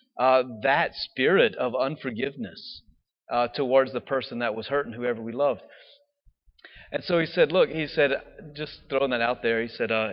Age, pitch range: 30-49, 125-170 Hz